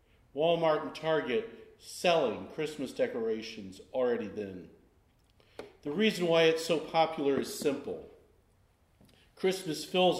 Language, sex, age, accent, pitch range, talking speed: English, male, 40-59, American, 135-185 Hz, 105 wpm